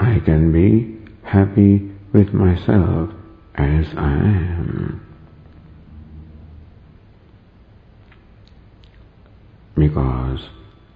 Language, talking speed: English, 55 wpm